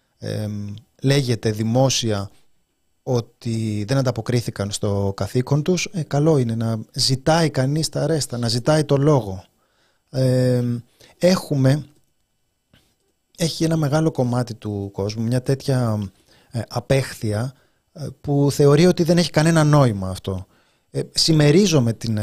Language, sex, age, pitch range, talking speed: Greek, male, 30-49, 115-160 Hz, 105 wpm